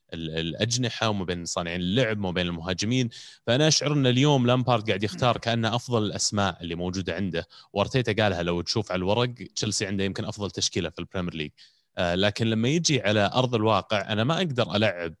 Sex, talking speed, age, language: male, 180 wpm, 30-49, Arabic